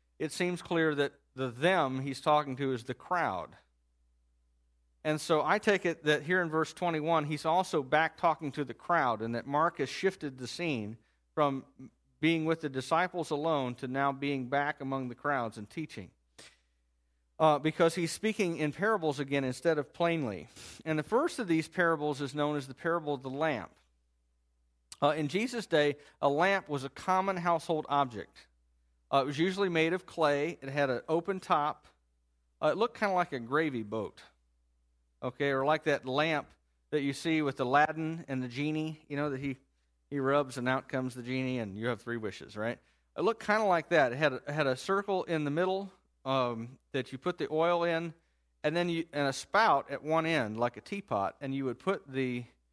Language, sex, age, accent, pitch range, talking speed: English, male, 40-59, American, 120-160 Hz, 200 wpm